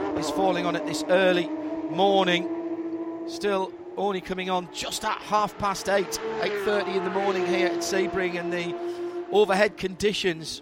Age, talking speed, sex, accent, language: 40-59, 155 wpm, male, British, English